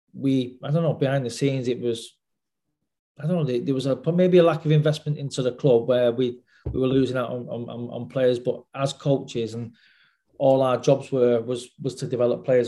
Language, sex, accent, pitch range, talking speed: English, male, British, 120-130 Hz, 220 wpm